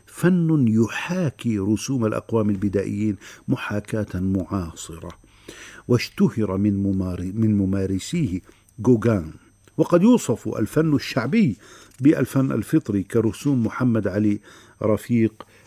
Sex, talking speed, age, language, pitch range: male, 85 wpm, 50-69, Arabic, 100-130 Hz